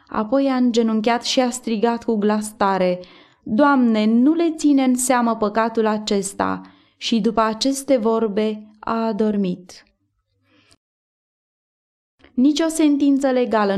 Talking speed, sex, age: 110 wpm, female, 20-39